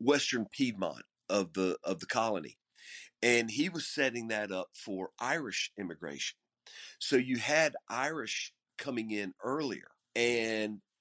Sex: male